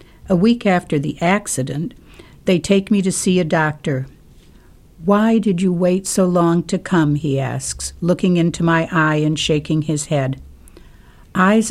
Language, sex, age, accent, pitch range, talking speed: English, female, 60-79, American, 150-190 Hz, 160 wpm